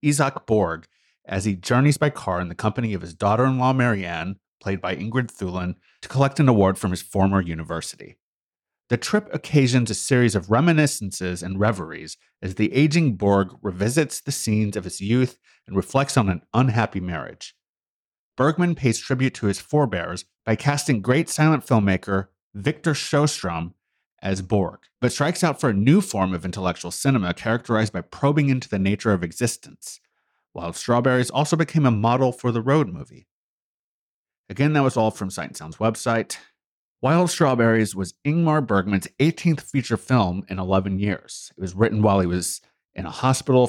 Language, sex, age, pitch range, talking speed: English, male, 30-49, 95-135 Hz, 170 wpm